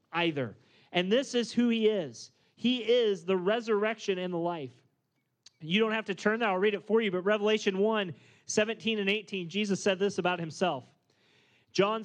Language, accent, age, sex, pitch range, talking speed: English, American, 30-49, male, 170-210 Hz, 180 wpm